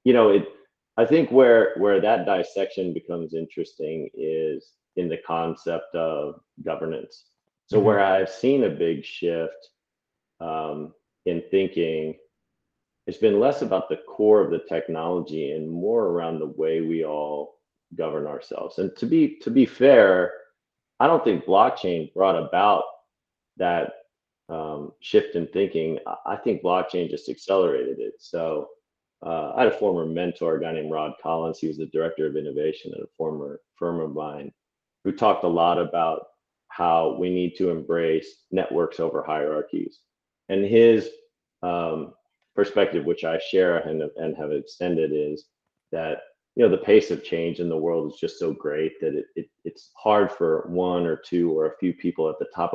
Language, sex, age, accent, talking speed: English, male, 40-59, American, 165 wpm